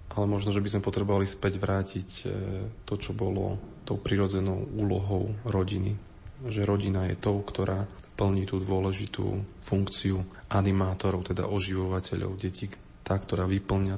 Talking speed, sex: 135 wpm, male